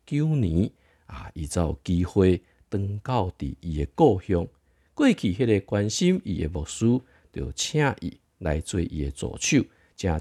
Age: 50-69